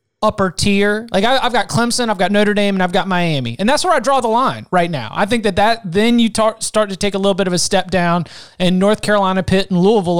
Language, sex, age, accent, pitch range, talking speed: English, male, 30-49, American, 170-210 Hz, 265 wpm